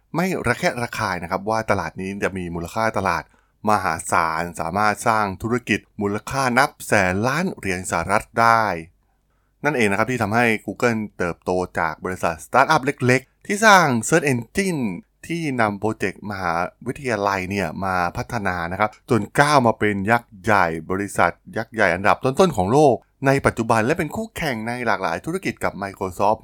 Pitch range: 95-120 Hz